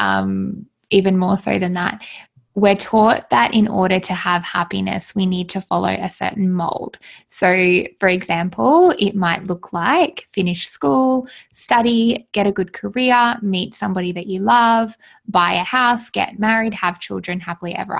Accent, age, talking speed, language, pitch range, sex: Australian, 20-39, 165 wpm, English, 180-210 Hz, female